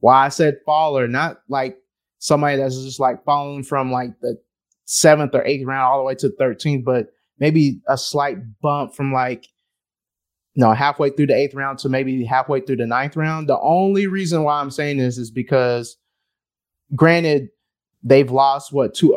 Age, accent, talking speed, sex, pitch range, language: 20-39, American, 185 wpm, male, 125-145 Hz, English